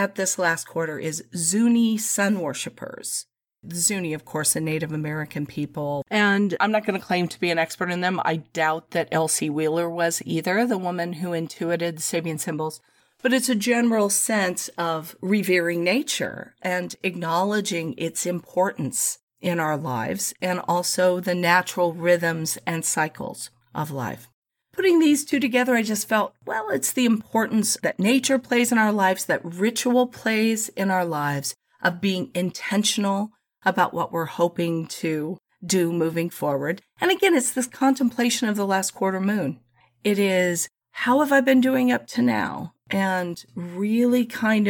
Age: 40-59